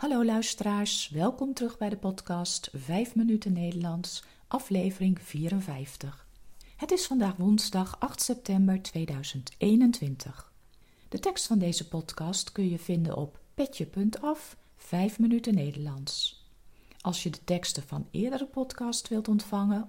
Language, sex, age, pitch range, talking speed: Dutch, female, 40-59, 160-230 Hz, 125 wpm